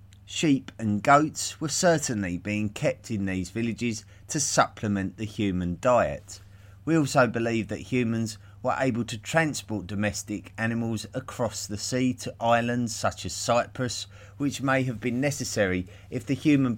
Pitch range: 100-120 Hz